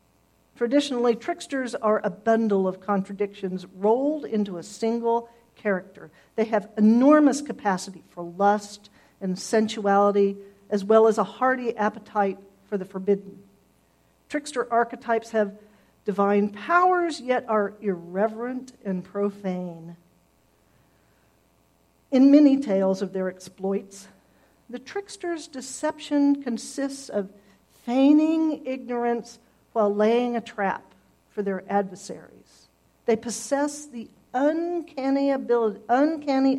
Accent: American